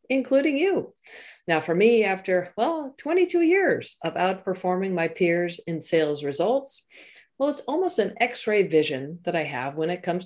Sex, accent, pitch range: female, American, 180-285 Hz